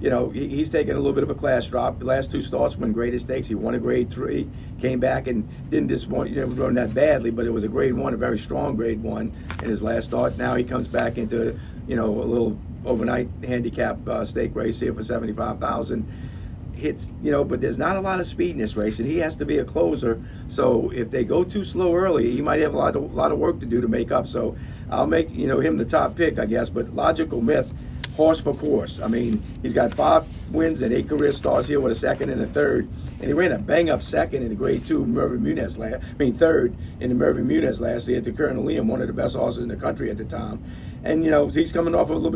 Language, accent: English, American